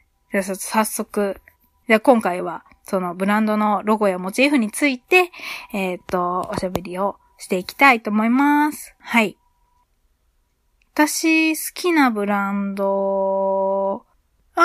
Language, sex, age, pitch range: Japanese, female, 20-39, 195-300 Hz